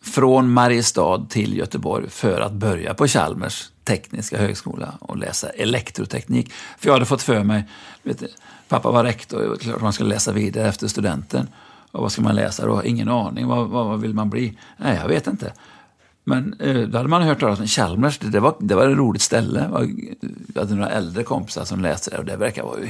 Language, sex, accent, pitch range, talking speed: Swedish, male, native, 105-140 Hz, 200 wpm